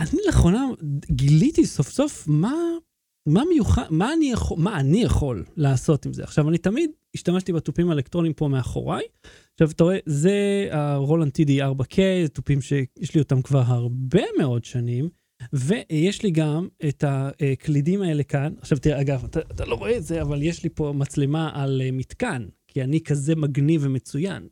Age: 30-49